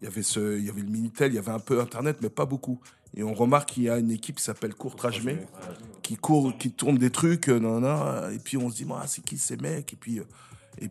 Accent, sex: French, male